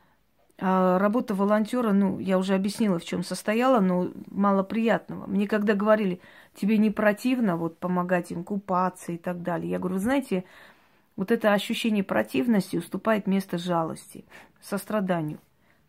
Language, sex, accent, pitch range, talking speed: Russian, female, native, 180-220 Hz, 145 wpm